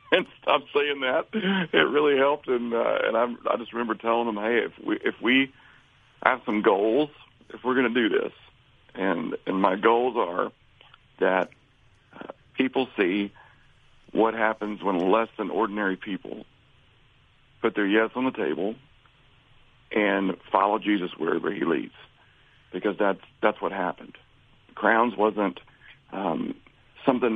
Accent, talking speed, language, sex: American, 145 wpm, English, male